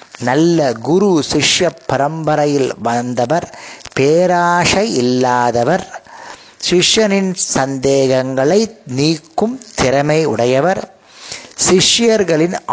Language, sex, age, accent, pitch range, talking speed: Tamil, male, 30-49, native, 130-170 Hz, 60 wpm